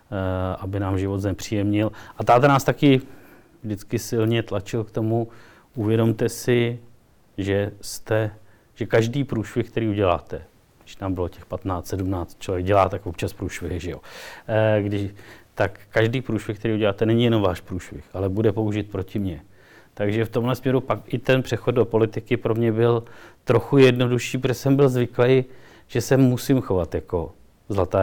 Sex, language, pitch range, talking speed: male, Czech, 95-115 Hz, 155 wpm